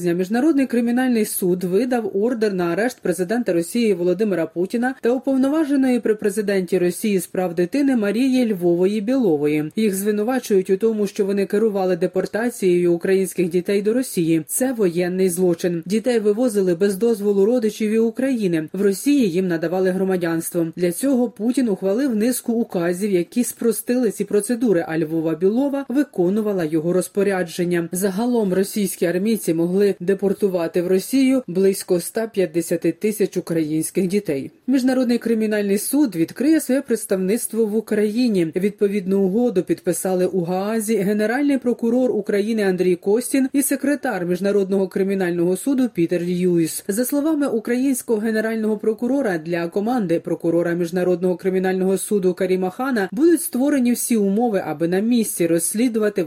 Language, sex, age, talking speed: Ukrainian, female, 30-49, 130 wpm